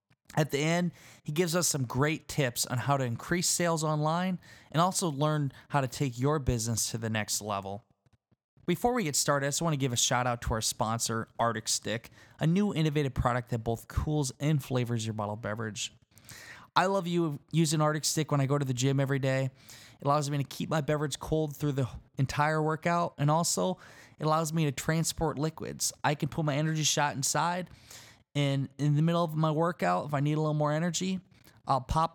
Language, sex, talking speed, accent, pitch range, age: English, male, 205 wpm, American, 125-155 Hz, 20-39